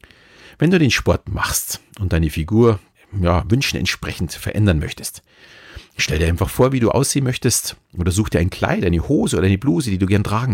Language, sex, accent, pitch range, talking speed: German, male, German, 85-115 Hz, 195 wpm